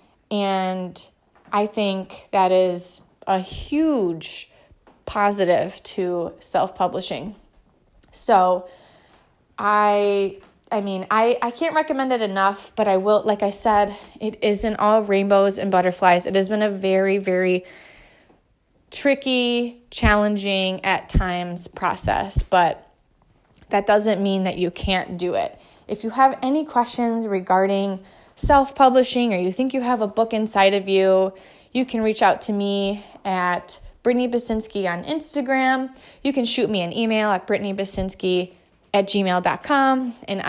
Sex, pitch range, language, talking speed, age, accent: female, 190-230 Hz, English, 135 wpm, 20-39, American